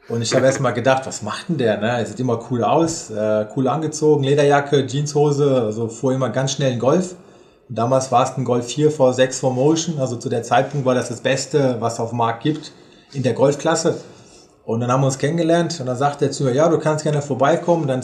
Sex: male